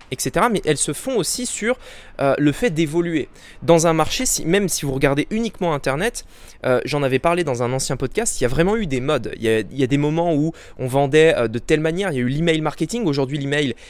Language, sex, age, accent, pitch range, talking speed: French, male, 20-39, French, 140-185 Hz, 255 wpm